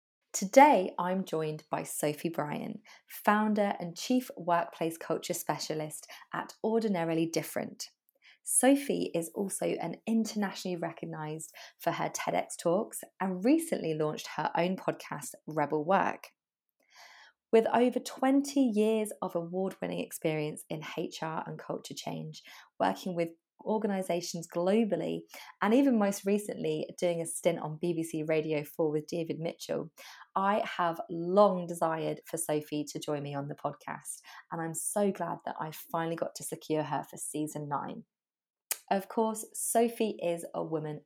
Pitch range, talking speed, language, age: 155-215 Hz, 140 wpm, English, 20-39